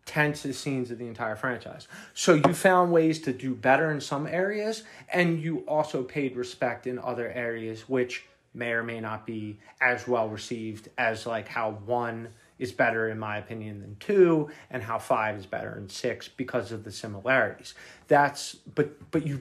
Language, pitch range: English, 120-155 Hz